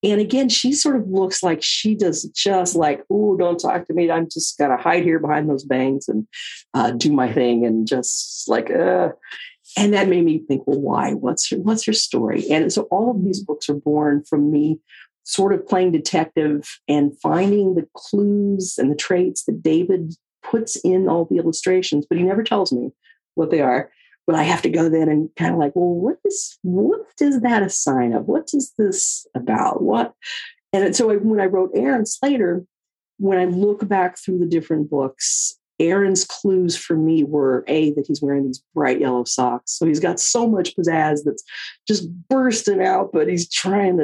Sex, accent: female, American